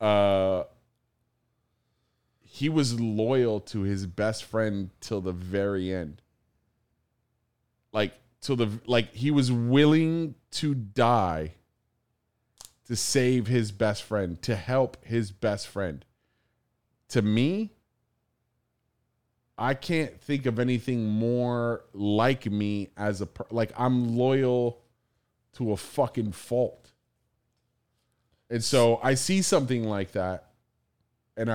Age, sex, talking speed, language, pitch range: 30-49, male, 110 wpm, English, 110-135 Hz